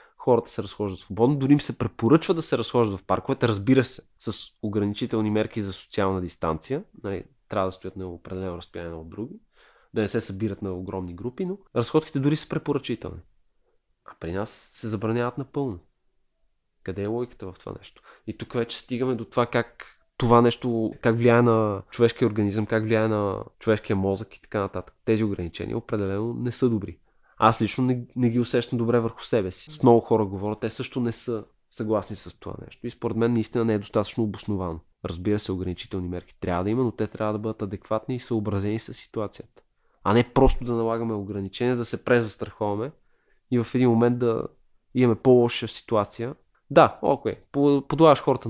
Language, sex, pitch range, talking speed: Bulgarian, male, 100-125 Hz, 185 wpm